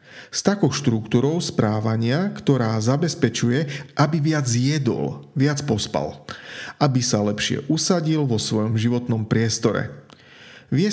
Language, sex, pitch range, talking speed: Slovak, male, 115-150 Hz, 110 wpm